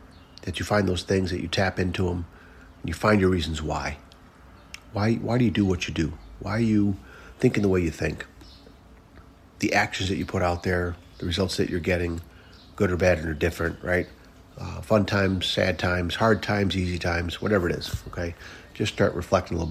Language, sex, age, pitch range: English, male, 40-59, 85-95 Hz